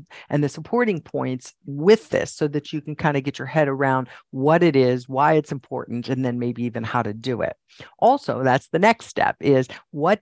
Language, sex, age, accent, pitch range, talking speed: English, female, 50-69, American, 125-190 Hz, 215 wpm